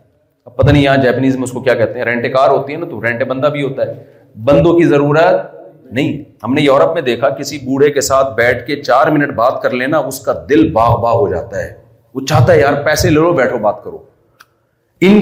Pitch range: 130-170 Hz